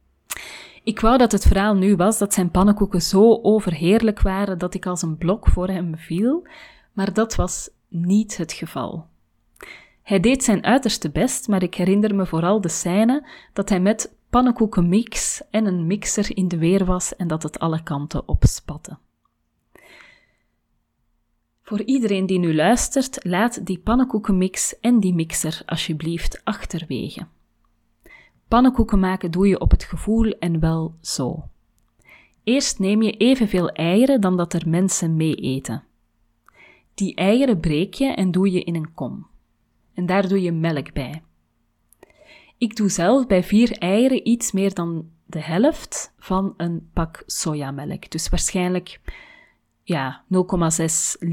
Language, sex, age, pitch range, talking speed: Dutch, female, 30-49, 170-220 Hz, 145 wpm